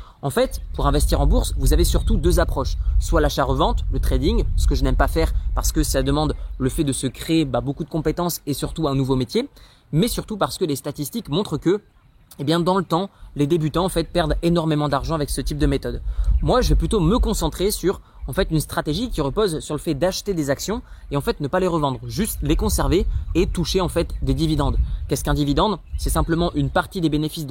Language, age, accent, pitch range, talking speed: French, 20-39, French, 140-185 Hz, 240 wpm